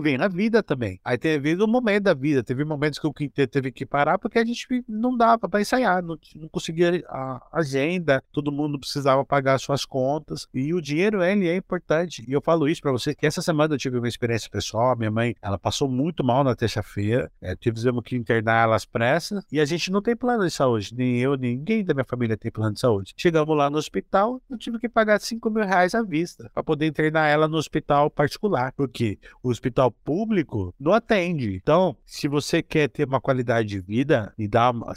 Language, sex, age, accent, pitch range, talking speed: Portuguese, male, 50-69, Brazilian, 120-175 Hz, 220 wpm